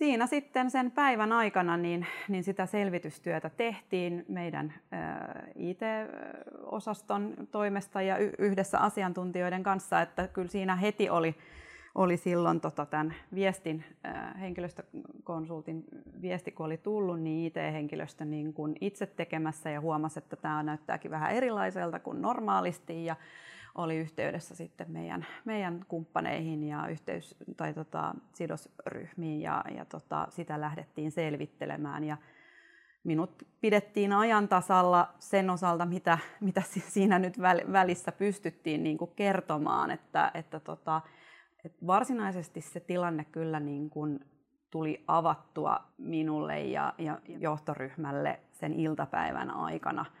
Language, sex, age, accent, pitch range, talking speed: Finnish, female, 30-49, native, 155-195 Hz, 115 wpm